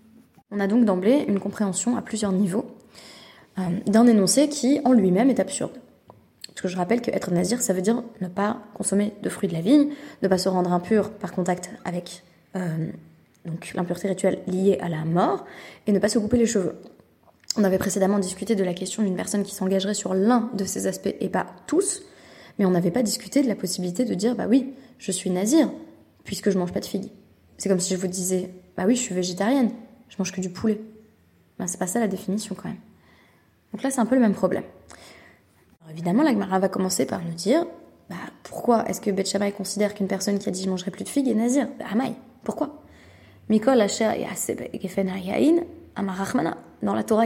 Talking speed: 210 wpm